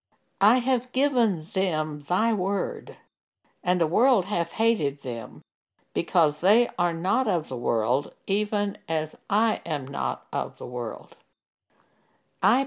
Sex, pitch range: female, 165-230 Hz